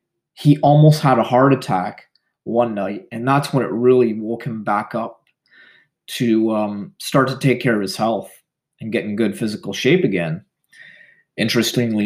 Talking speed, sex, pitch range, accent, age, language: 170 wpm, male, 115-150 Hz, American, 30-49, English